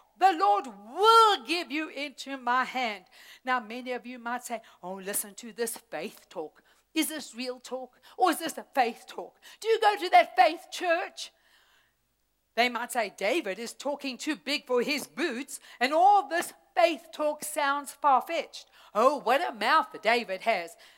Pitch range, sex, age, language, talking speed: 245-360 Hz, female, 60-79, English, 175 wpm